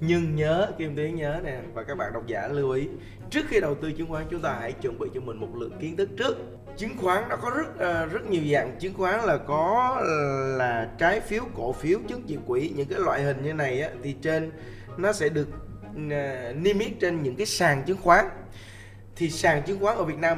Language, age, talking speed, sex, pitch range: Vietnamese, 20-39, 235 wpm, male, 135-185 Hz